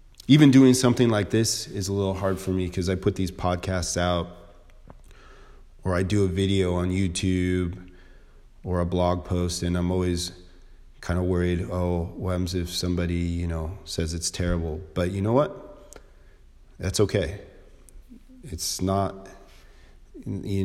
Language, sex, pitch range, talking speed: English, male, 85-100 Hz, 155 wpm